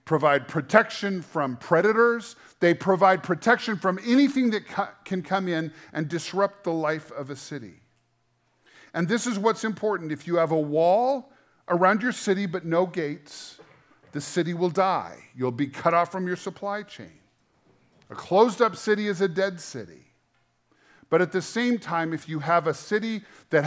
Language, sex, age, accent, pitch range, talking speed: English, male, 50-69, American, 120-185 Hz, 165 wpm